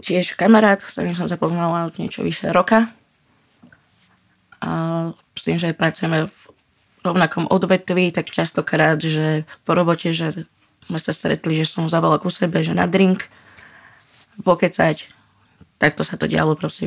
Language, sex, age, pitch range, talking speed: Slovak, female, 20-39, 155-180 Hz, 145 wpm